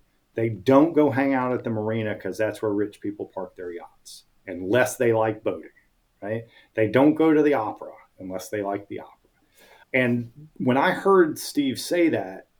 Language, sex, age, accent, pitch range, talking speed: English, male, 40-59, American, 110-140 Hz, 185 wpm